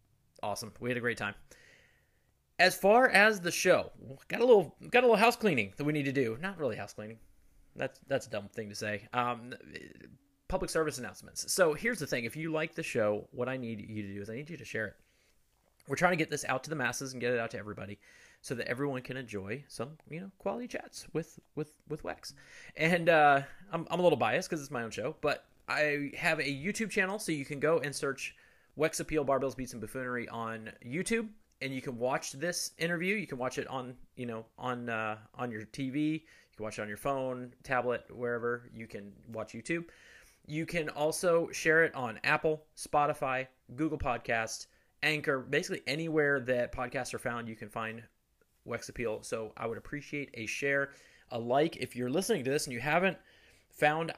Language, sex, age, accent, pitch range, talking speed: English, male, 30-49, American, 115-160 Hz, 215 wpm